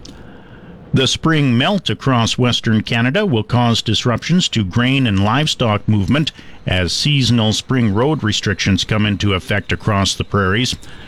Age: 50-69